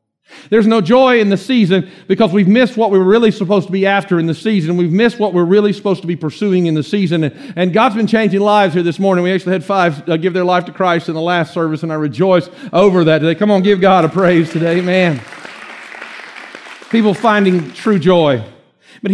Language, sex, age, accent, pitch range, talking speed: English, male, 50-69, American, 145-200 Hz, 225 wpm